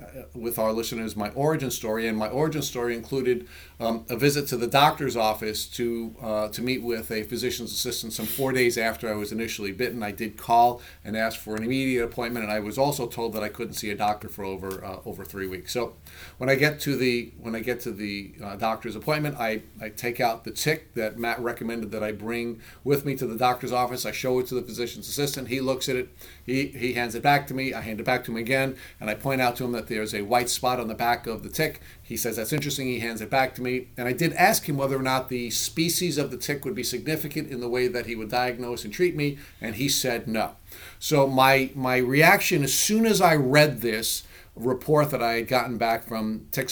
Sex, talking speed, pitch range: male, 250 wpm, 110-135 Hz